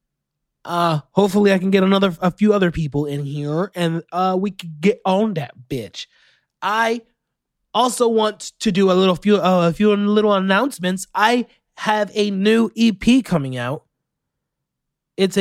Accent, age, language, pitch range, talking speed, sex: American, 20-39, English, 160-200 Hz, 160 wpm, male